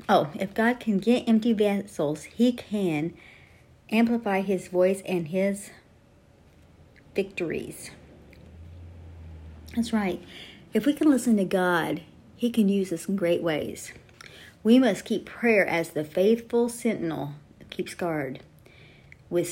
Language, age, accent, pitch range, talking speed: English, 50-69, American, 170-215 Hz, 125 wpm